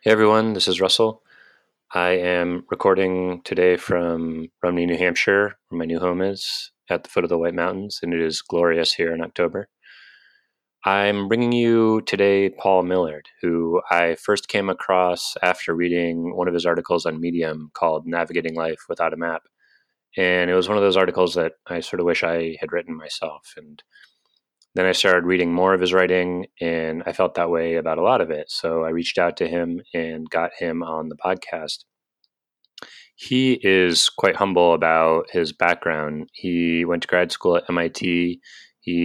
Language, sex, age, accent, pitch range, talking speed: English, male, 30-49, American, 85-90 Hz, 185 wpm